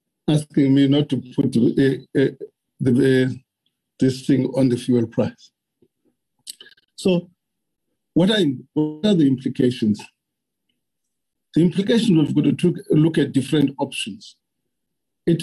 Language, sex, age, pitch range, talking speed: English, male, 50-69, 125-150 Hz, 120 wpm